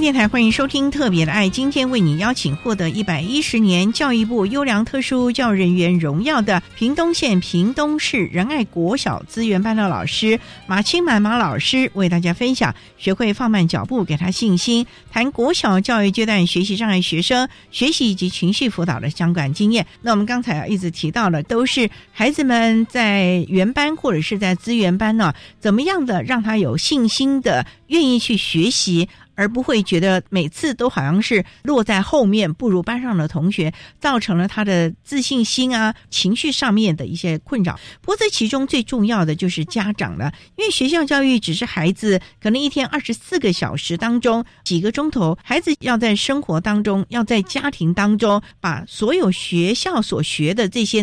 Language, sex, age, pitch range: Chinese, female, 50-69, 180-245 Hz